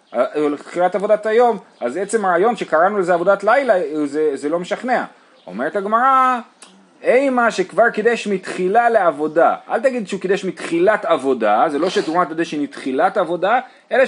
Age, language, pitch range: 30-49, Hebrew, 150-230 Hz